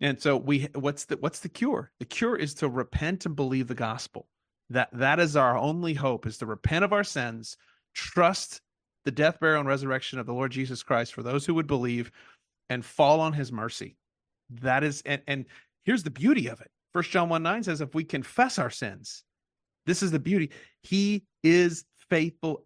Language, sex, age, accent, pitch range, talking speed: English, male, 40-59, American, 130-165 Hz, 200 wpm